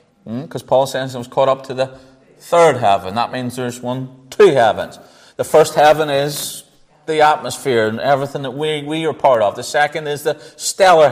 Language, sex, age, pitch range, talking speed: English, male, 30-49, 130-190 Hz, 200 wpm